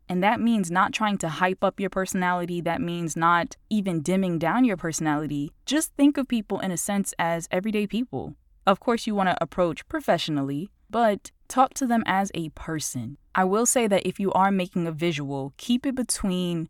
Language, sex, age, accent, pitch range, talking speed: English, female, 20-39, American, 170-225 Hz, 195 wpm